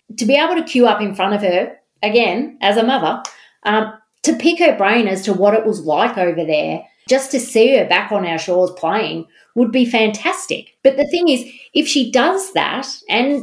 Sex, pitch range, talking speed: female, 190-250 Hz, 215 wpm